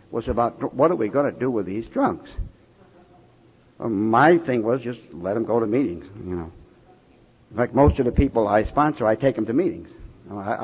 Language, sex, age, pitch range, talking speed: English, male, 60-79, 110-150 Hz, 210 wpm